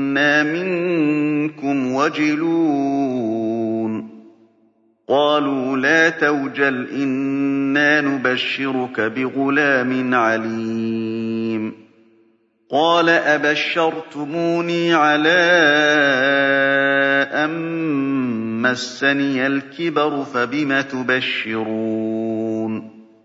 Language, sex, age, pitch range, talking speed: Arabic, male, 40-59, 115-145 Hz, 45 wpm